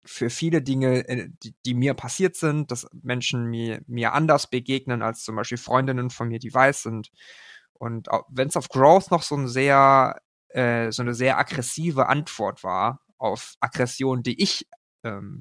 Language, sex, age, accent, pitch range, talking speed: German, male, 20-39, German, 115-135 Hz, 170 wpm